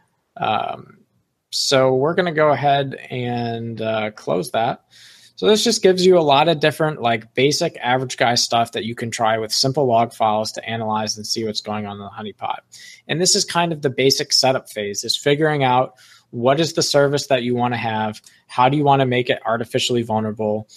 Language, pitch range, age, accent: English, 115-140 Hz, 20-39, American